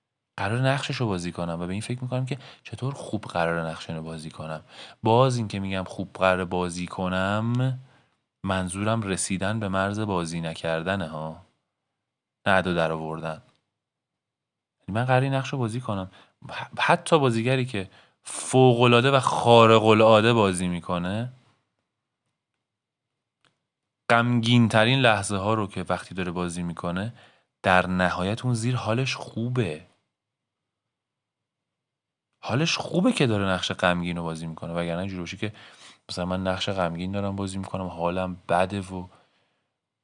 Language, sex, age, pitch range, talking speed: Persian, male, 30-49, 90-120 Hz, 125 wpm